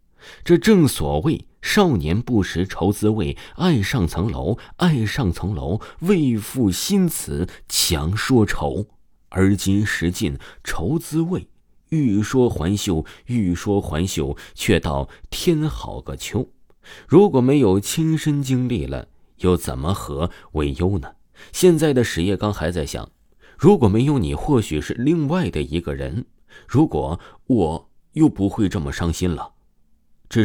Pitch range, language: 80-120 Hz, Chinese